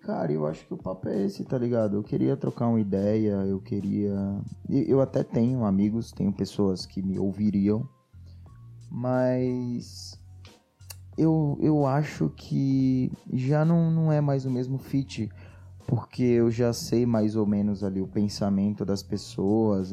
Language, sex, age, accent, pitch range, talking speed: Portuguese, male, 20-39, Brazilian, 100-120 Hz, 155 wpm